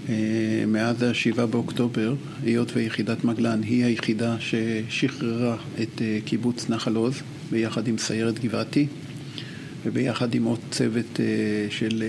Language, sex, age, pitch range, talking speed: Hebrew, male, 50-69, 115-130 Hz, 110 wpm